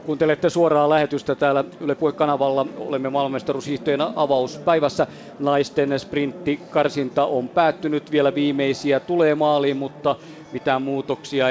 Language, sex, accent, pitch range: Finnish, male, native, 125-150 Hz